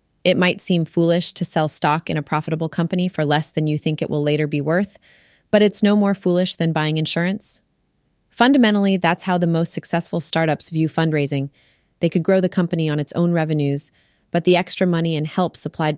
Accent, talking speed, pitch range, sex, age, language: American, 205 wpm, 150-180 Hz, female, 30-49, English